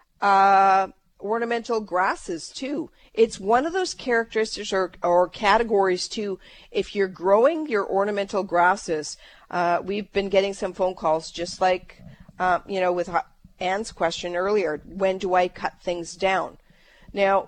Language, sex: English, female